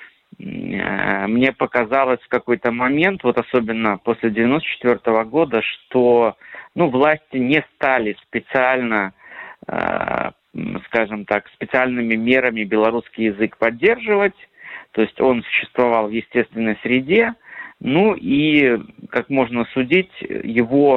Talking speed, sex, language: 105 wpm, male, Russian